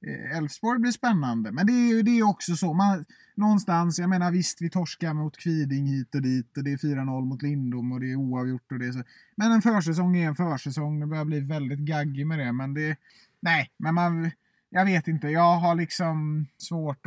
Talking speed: 200 wpm